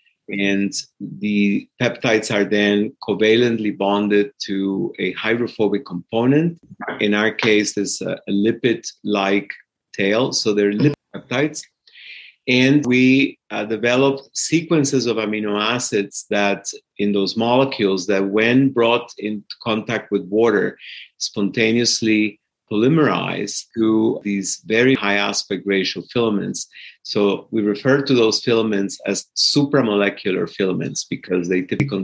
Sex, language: male, English